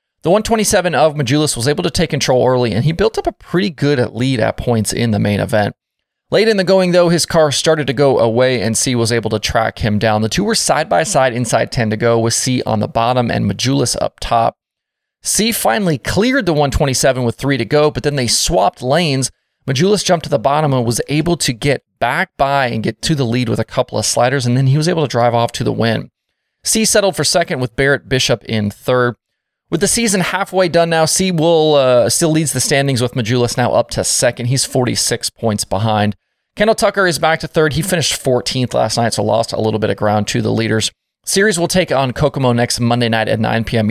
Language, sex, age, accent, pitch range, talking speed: English, male, 30-49, American, 115-170 Hz, 235 wpm